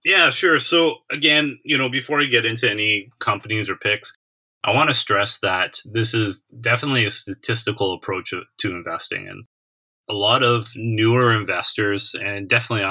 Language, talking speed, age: English, 165 wpm, 30-49